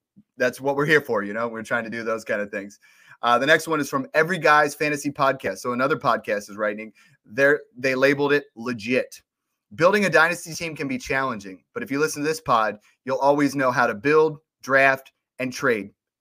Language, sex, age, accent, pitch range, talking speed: English, male, 30-49, American, 125-150 Hz, 215 wpm